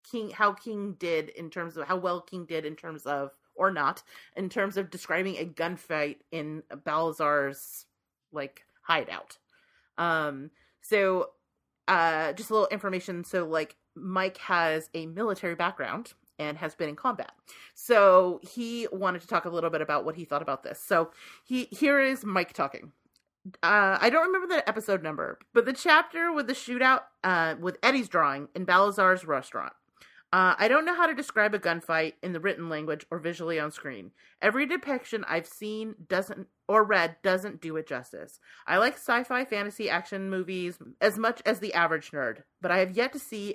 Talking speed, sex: 180 wpm, female